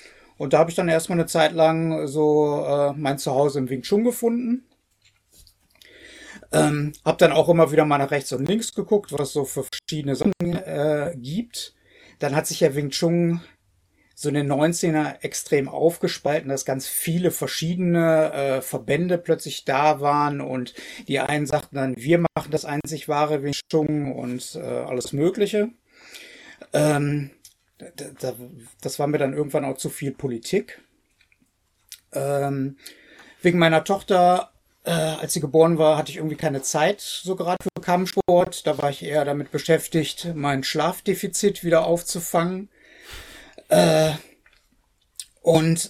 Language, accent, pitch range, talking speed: German, German, 145-175 Hz, 145 wpm